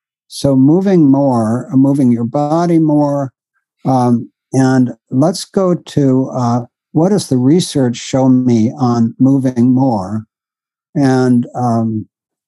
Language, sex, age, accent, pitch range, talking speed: English, male, 60-79, American, 120-145 Hz, 115 wpm